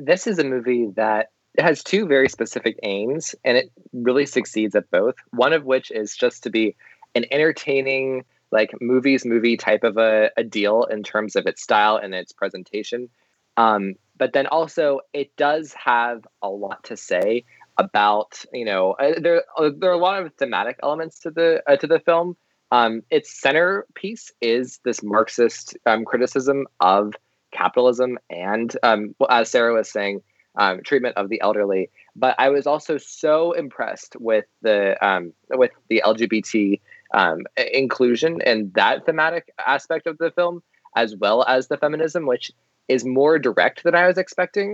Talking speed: 170 wpm